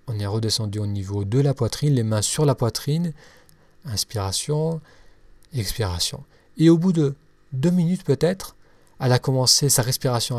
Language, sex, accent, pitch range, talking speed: French, male, French, 115-160 Hz, 155 wpm